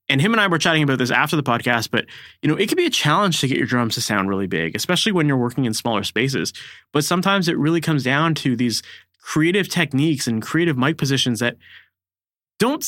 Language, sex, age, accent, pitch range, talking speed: English, male, 20-39, American, 115-170 Hz, 235 wpm